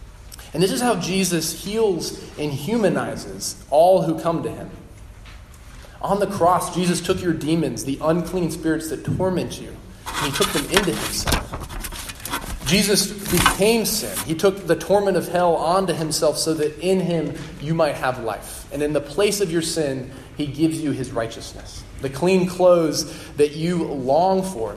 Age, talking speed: 20-39, 170 wpm